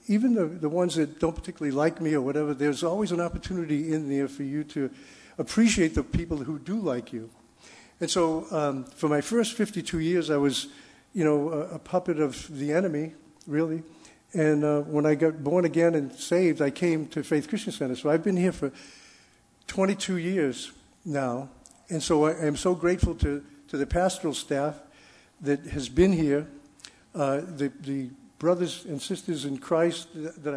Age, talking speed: 50-69, 185 wpm